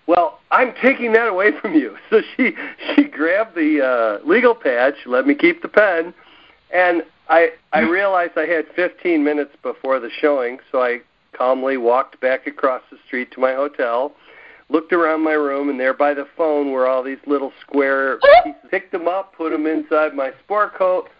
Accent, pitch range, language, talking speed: American, 135-180 Hz, English, 190 wpm